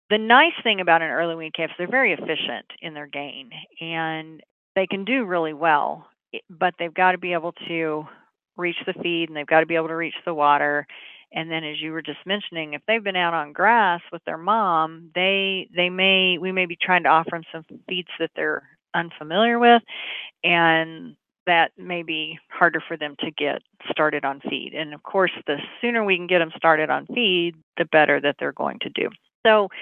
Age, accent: 40-59, American